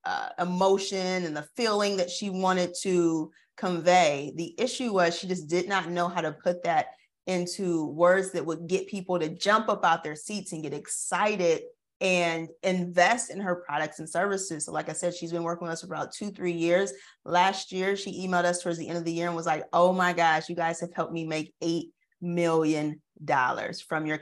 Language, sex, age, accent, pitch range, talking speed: English, female, 30-49, American, 160-185 Hz, 215 wpm